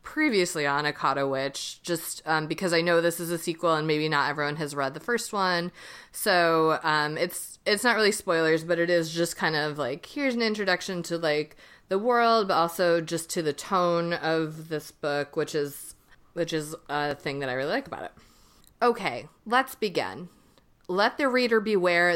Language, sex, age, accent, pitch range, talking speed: English, female, 30-49, American, 155-200 Hz, 190 wpm